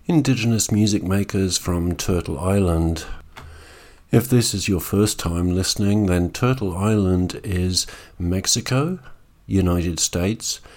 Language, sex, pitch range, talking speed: English, male, 90-120 Hz, 110 wpm